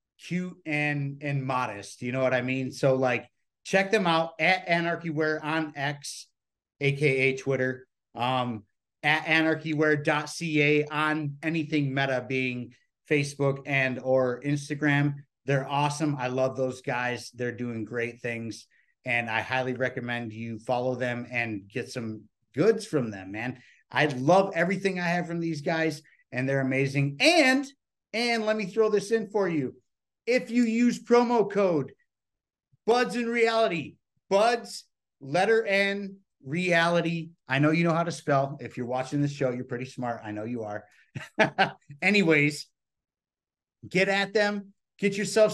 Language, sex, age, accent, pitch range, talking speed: English, male, 30-49, American, 130-195 Hz, 150 wpm